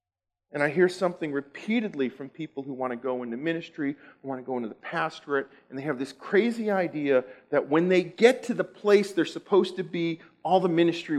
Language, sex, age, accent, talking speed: English, male, 40-59, American, 215 wpm